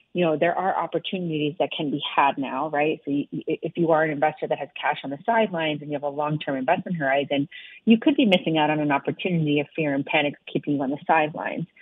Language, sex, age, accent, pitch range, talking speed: English, female, 30-49, American, 145-175 Hz, 245 wpm